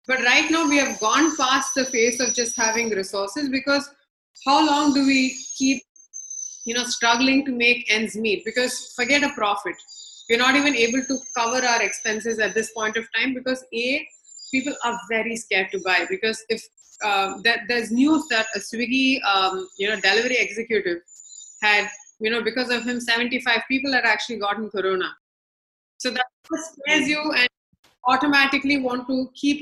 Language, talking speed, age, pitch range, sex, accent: English, 175 wpm, 30-49, 215-265 Hz, female, Indian